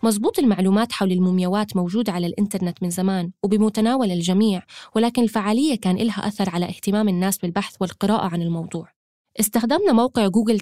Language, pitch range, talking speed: Arabic, 190-230 Hz, 145 wpm